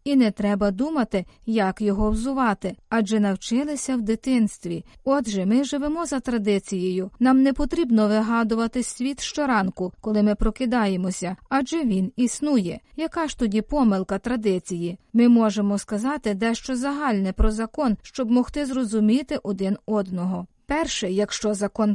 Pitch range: 205-270 Hz